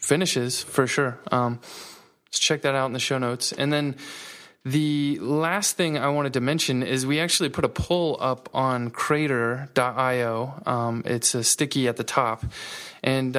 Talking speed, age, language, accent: 170 wpm, 20-39, English, American